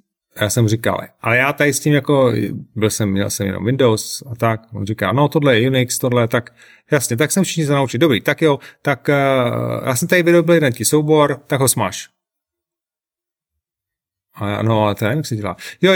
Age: 30-49